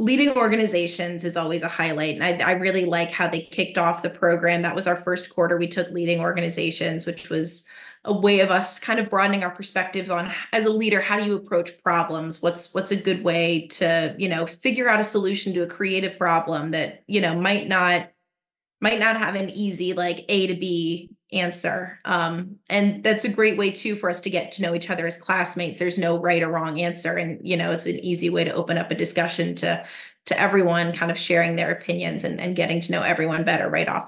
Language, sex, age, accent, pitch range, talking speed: English, female, 20-39, American, 170-195 Hz, 225 wpm